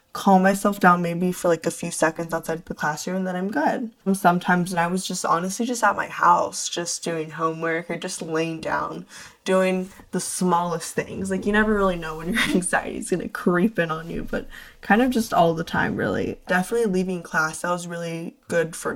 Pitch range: 170-210 Hz